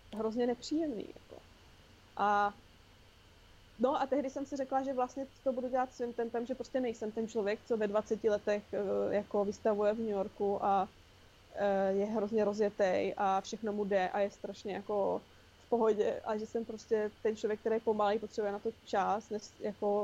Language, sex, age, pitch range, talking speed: Czech, female, 20-39, 190-225 Hz, 175 wpm